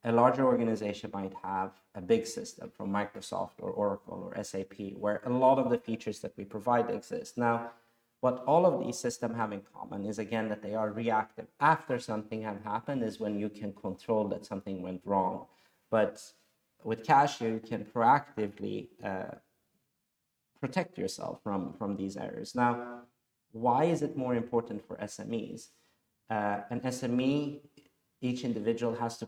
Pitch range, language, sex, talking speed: 105-125 Hz, Arabic, male, 165 wpm